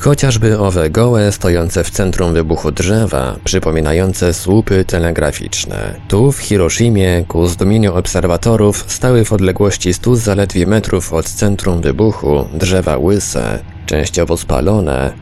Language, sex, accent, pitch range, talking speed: Polish, male, native, 85-110 Hz, 120 wpm